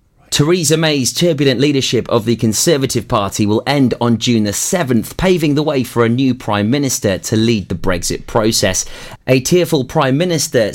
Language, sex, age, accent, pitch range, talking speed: English, male, 30-49, British, 110-135 Hz, 175 wpm